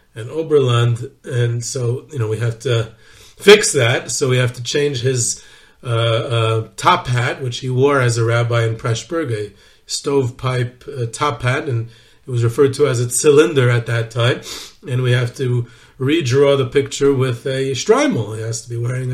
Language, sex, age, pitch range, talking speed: English, male, 40-59, 120-155 Hz, 190 wpm